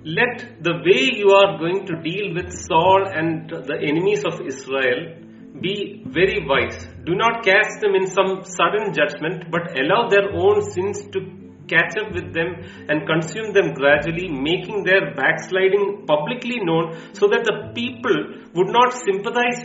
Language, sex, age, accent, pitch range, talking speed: English, male, 40-59, Indian, 150-200 Hz, 160 wpm